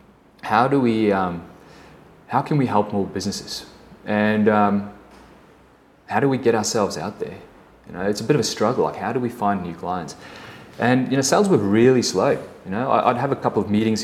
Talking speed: 210 wpm